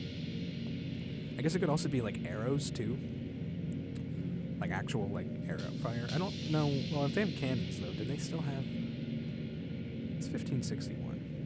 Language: English